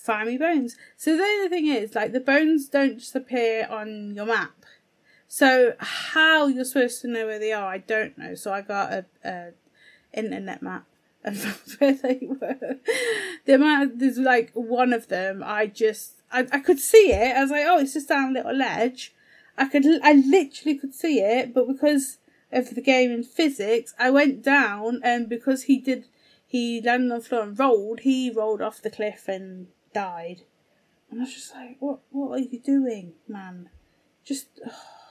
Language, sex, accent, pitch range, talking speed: English, female, British, 220-275 Hz, 190 wpm